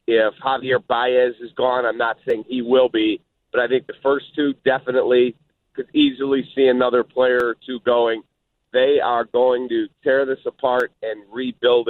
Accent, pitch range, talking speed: American, 125-175 Hz, 175 wpm